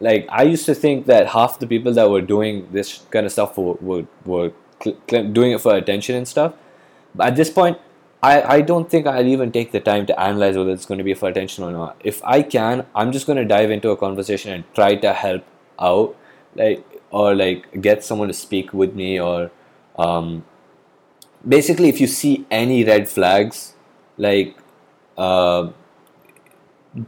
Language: English